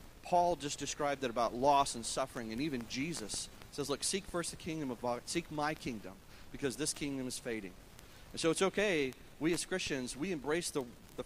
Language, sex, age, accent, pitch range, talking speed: English, male, 40-59, American, 110-145 Hz, 205 wpm